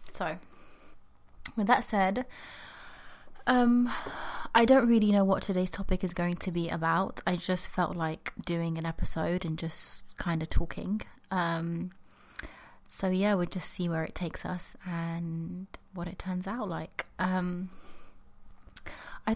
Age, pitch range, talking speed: 20-39, 165-200 Hz, 145 wpm